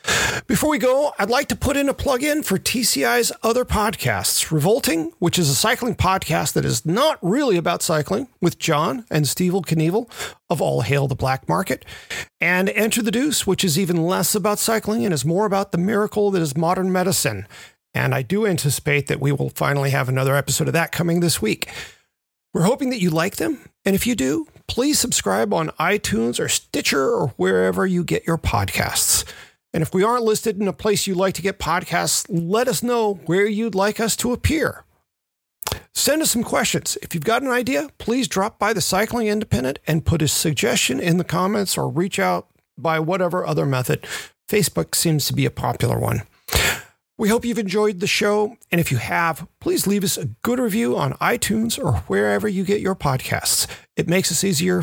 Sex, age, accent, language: male, 40-59, American, English